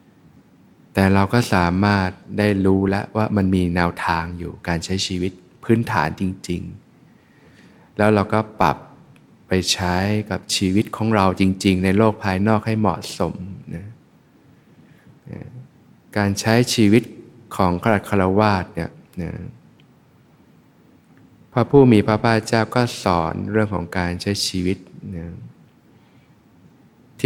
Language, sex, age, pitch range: Thai, male, 20-39, 90-110 Hz